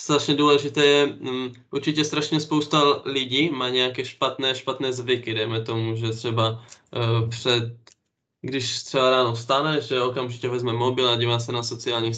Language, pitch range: Czech, 115-130 Hz